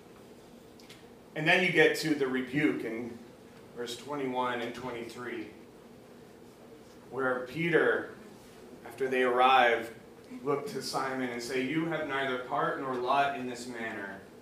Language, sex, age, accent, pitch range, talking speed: English, male, 30-49, American, 115-155 Hz, 130 wpm